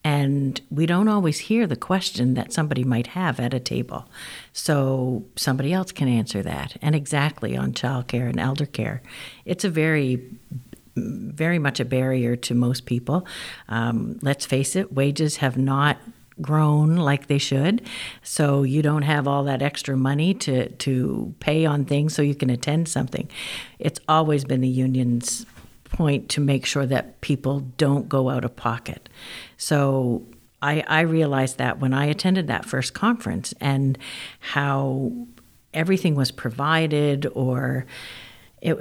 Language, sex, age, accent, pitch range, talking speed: English, female, 60-79, American, 130-155 Hz, 155 wpm